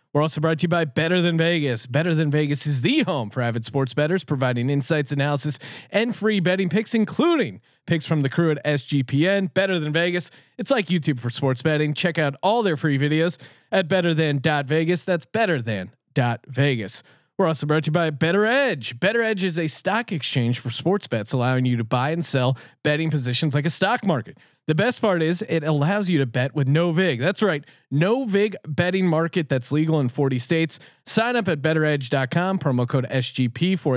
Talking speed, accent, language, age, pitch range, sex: 205 wpm, American, English, 30-49, 135-175 Hz, male